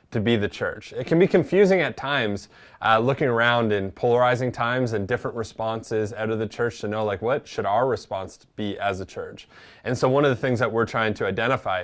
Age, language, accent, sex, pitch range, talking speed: 20-39, English, American, male, 105-125 Hz, 230 wpm